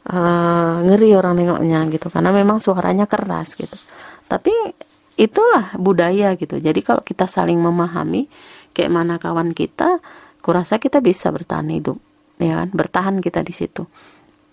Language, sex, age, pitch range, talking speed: Indonesian, female, 30-49, 165-215 Hz, 140 wpm